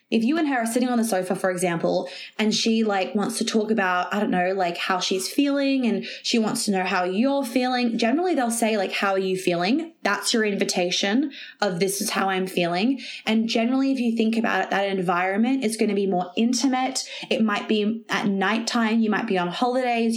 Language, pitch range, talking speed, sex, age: English, 190-240 Hz, 220 wpm, female, 20-39